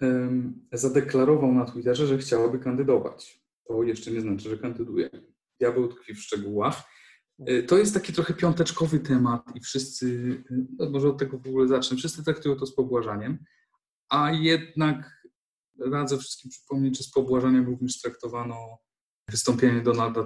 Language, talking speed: Polish, 140 wpm